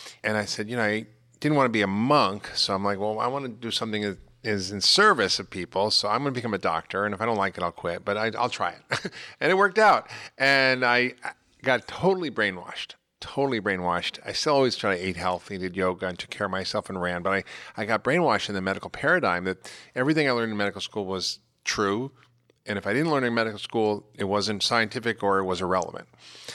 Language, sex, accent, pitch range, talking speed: English, male, American, 100-120 Hz, 240 wpm